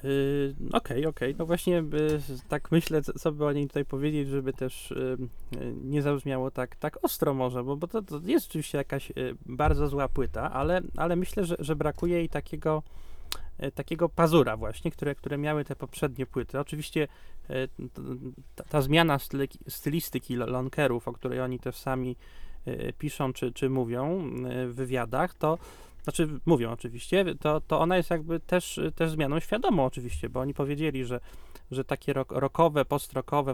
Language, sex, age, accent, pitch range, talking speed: Polish, male, 20-39, native, 130-160 Hz, 160 wpm